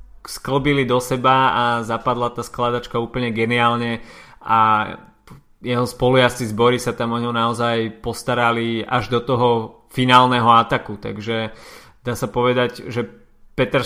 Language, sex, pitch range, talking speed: Slovak, male, 115-130 Hz, 130 wpm